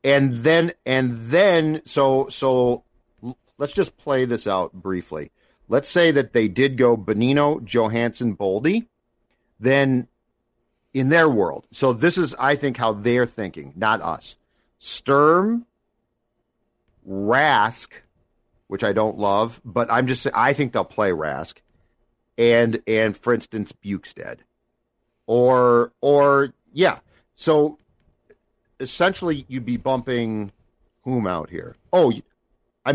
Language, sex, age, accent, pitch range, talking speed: English, male, 50-69, American, 110-140 Hz, 120 wpm